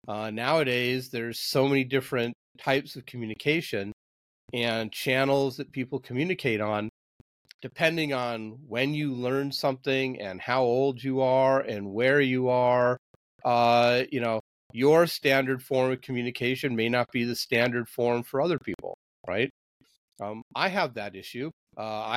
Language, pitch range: English, 115-130 Hz